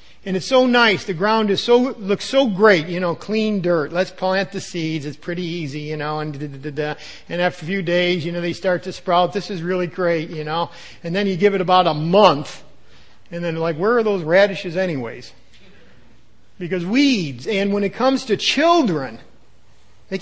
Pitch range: 170-220 Hz